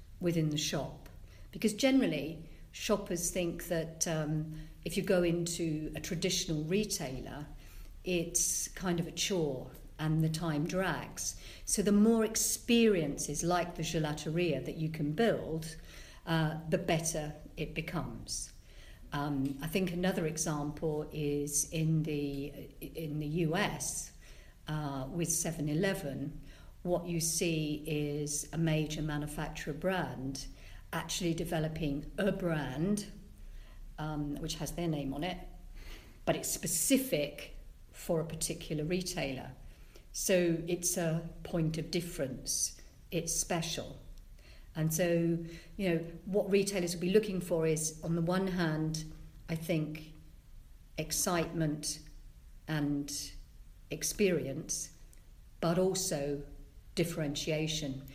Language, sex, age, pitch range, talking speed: English, female, 50-69, 145-175 Hz, 115 wpm